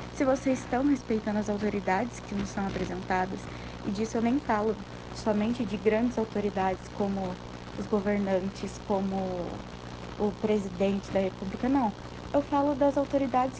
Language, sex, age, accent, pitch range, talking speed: Portuguese, female, 10-29, Brazilian, 190-230 Hz, 140 wpm